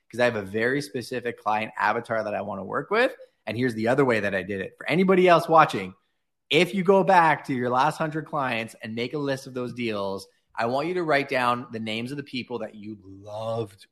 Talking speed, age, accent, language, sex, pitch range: 245 wpm, 20-39, American, English, male, 105-140 Hz